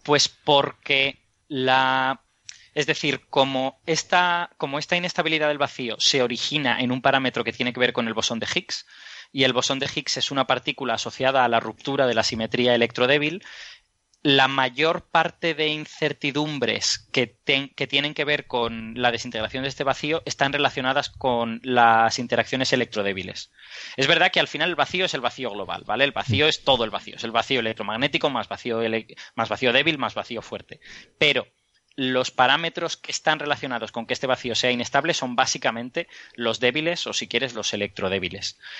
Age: 20-39